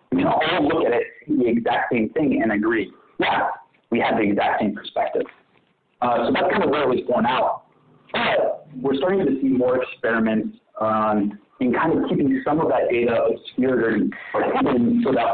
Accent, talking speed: American, 200 wpm